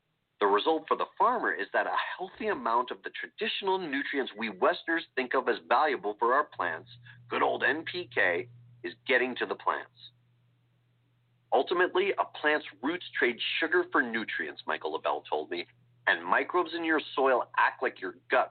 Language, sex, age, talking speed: English, male, 40-59, 170 wpm